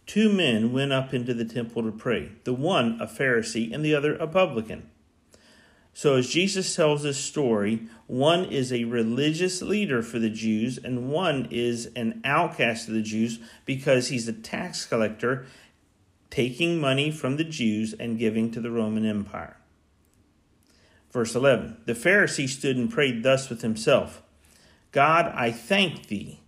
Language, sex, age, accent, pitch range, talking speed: English, male, 50-69, American, 110-145 Hz, 160 wpm